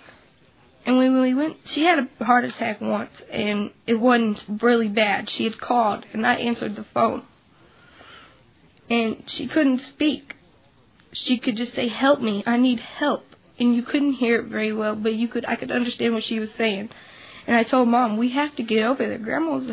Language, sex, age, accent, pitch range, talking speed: English, female, 10-29, American, 220-250 Hz, 195 wpm